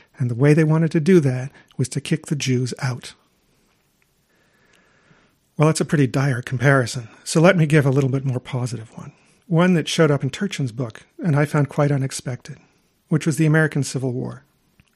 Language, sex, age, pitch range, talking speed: English, male, 50-69, 135-160 Hz, 195 wpm